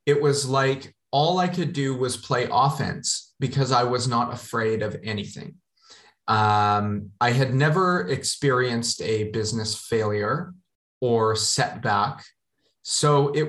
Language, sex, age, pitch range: English, male, 30-49, 110-145 Hz